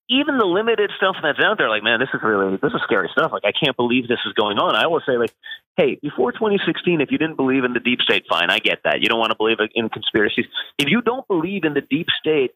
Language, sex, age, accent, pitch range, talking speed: English, male, 30-49, American, 120-190 Hz, 275 wpm